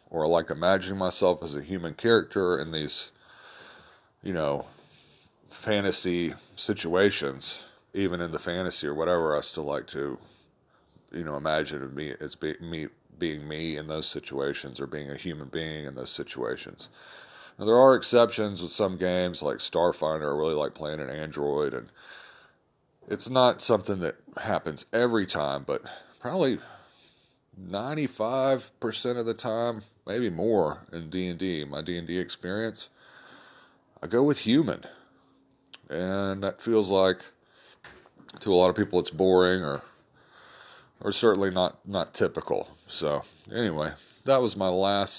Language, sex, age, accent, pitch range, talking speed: English, male, 40-59, American, 85-115 Hz, 145 wpm